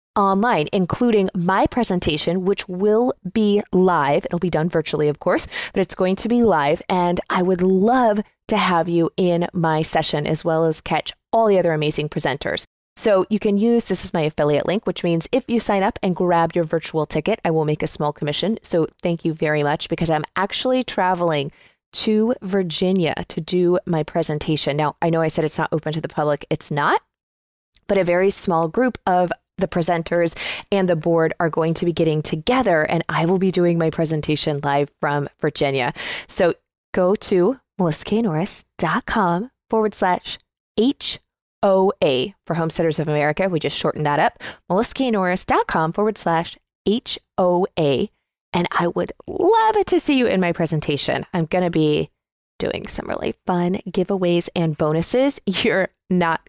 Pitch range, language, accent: 160-200 Hz, English, American